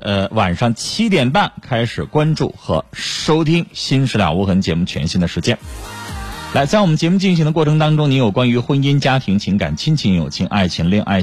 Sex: male